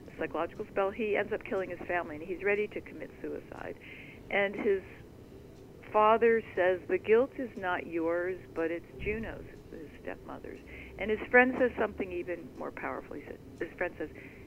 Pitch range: 155-235 Hz